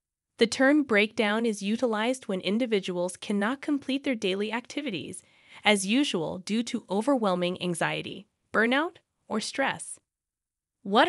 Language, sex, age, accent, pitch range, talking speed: English, female, 20-39, American, 195-265 Hz, 120 wpm